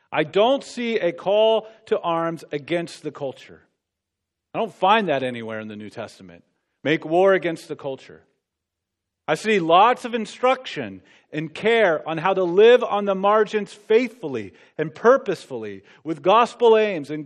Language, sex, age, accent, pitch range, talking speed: English, male, 40-59, American, 145-220 Hz, 155 wpm